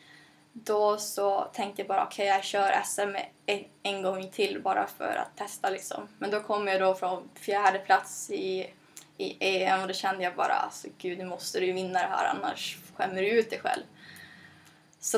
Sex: female